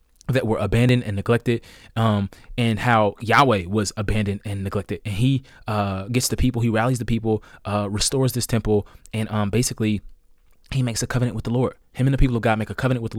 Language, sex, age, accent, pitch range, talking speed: English, male, 20-39, American, 105-130 Hz, 220 wpm